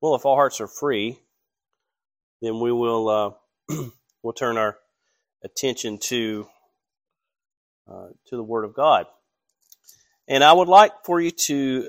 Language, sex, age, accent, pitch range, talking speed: English, male, 30-49, American, 115-140 Hz, 140 wpm